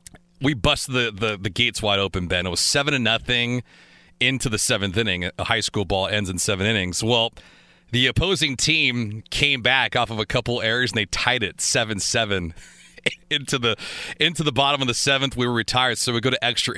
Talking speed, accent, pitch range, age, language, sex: 210 wpm, American, 100-125 Hz, 30-49, English, male